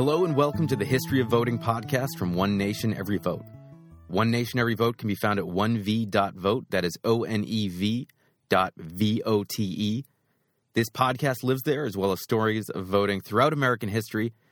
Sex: male